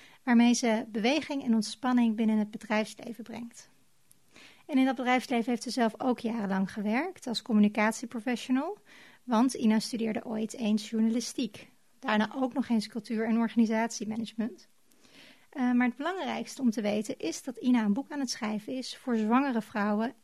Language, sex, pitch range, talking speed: Dutch, female, 220-255 Hz, 155 wpm